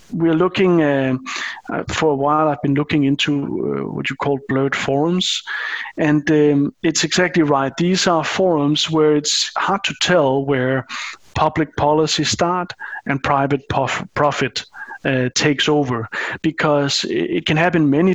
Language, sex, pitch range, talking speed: Czech, male, 140-160 Hz, 150 wpm